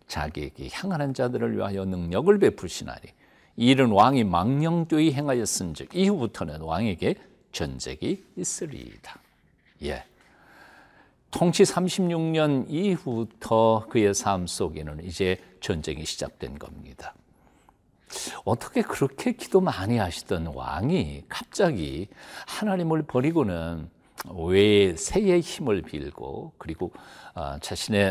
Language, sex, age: Korean, male, 60-79